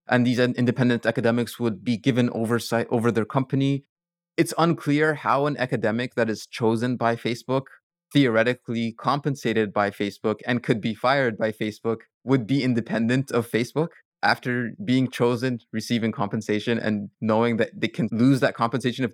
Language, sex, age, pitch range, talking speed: English, male, 20-39, 115-140 Hz, 155 wpm